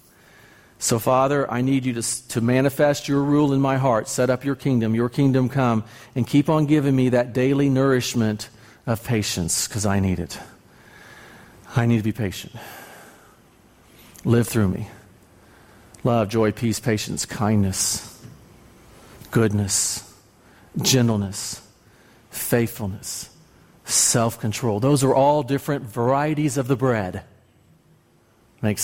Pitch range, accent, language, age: 115-150 Hz, American, English, 40-59